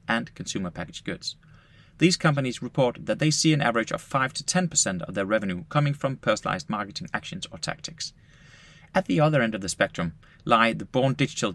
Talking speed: 190 wpm